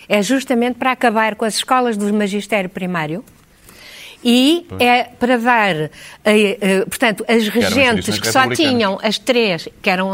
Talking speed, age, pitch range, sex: 140 wpm, 50-69, 200-260 Hz, female